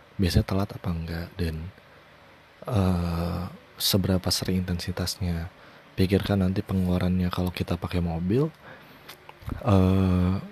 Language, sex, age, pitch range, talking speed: Indonesian, male, 20-39, 85-100 Hz, 95 wpm